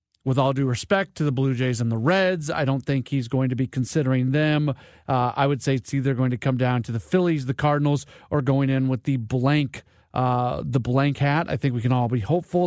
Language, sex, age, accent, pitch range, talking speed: English, male, 40-59, American, 130-170 Hz, 245 wpm